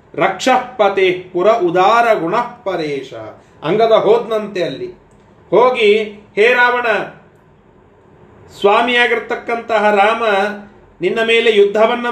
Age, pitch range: 30-49, 195-230 Hz